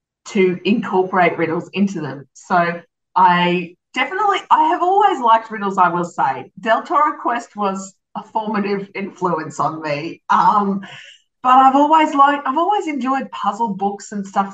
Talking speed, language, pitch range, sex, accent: 150 wpm, English, 175-250 Hz, female, Australian